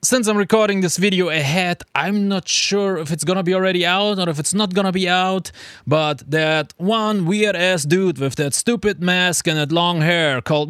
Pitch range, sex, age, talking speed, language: 120-180 Hz, male, 20-39, 210 wpm, English